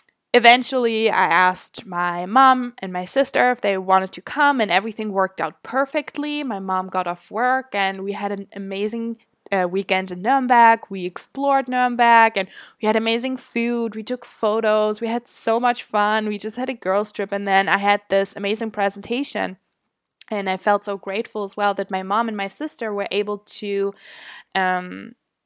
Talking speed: 185 wpm